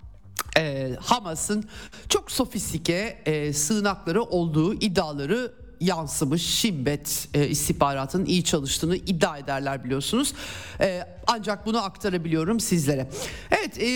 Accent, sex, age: native, male, 50-69